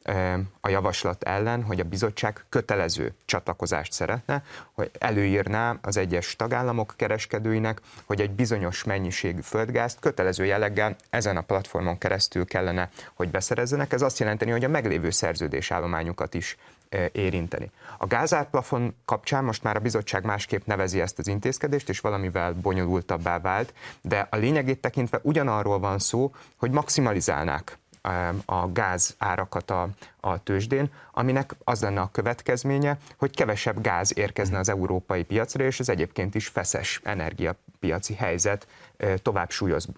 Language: Hungarian